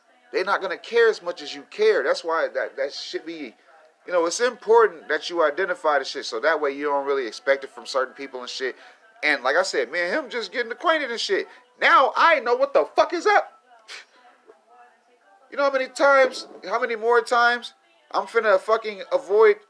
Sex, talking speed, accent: male, 215 wpm, American